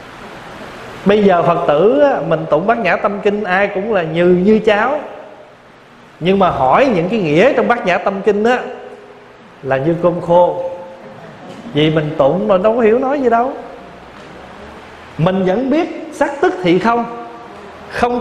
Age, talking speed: 20-39, 170 wpm